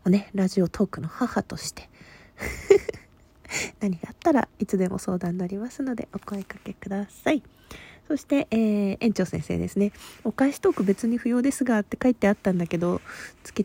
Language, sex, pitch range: Japanese, female, 180-230 Hz